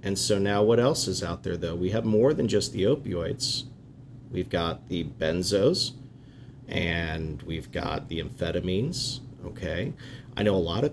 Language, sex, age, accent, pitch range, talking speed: English, male, 40-59, American, 100-130 Hz, 170 wpm